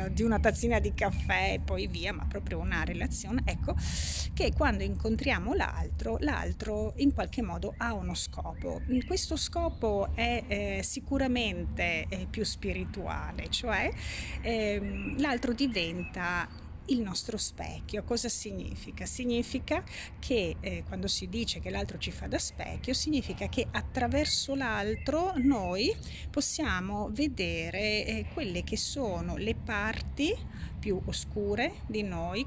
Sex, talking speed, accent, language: female, 130 wpm, native, Italian